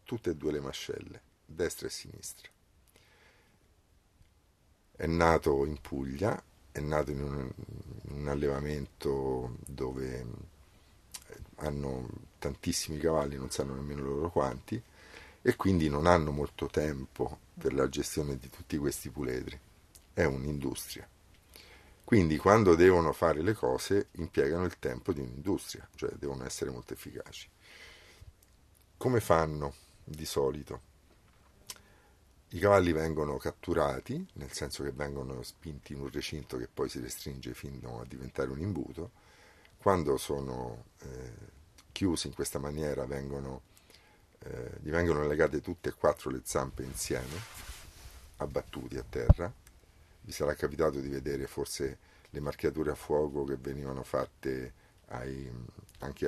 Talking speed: 125 wpm